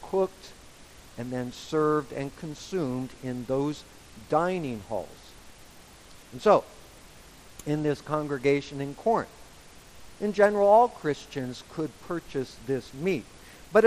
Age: 50-69